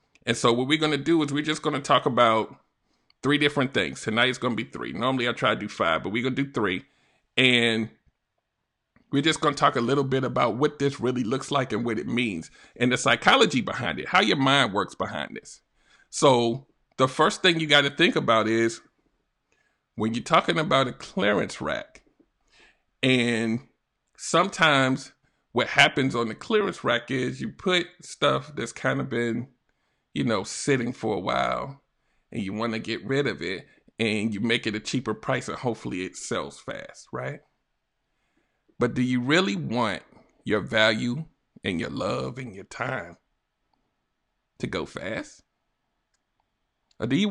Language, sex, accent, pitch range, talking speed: English, male, American, 115-145 Hz, 185 wpm